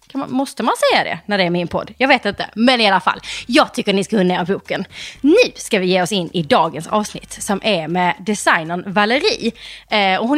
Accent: native